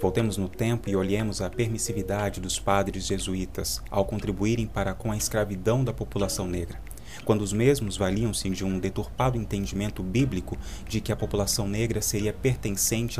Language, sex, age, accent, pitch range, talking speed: Portuguese, male, 30-49, Brazilian, 95-115 Hz, 160 wpm